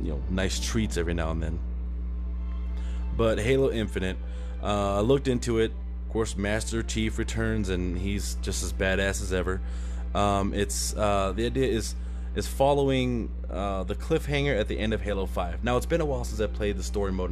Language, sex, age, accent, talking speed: English, male, 20-39, American, 195 wpm